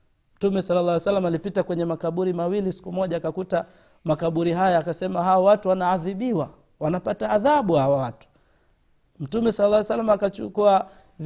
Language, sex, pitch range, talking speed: Swahili, male, 150-195 Hz, 130 wpm